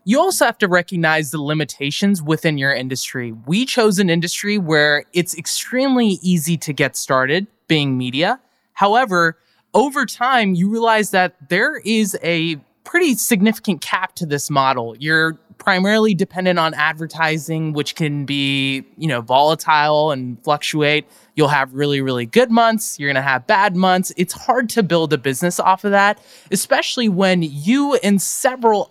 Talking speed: 160 wpm